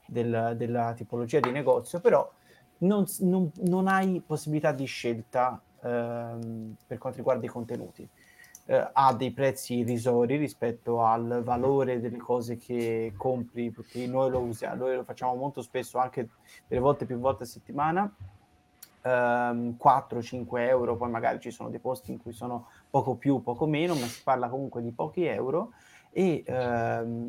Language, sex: Italian, male